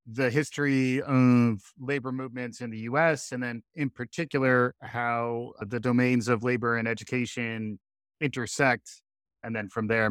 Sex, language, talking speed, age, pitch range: male, English, 140 wpm, 30-49, 110-140 Hz